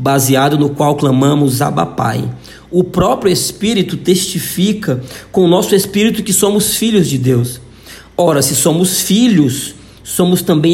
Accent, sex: Brazilian, male